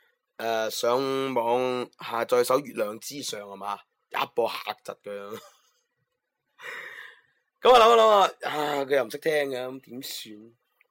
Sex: male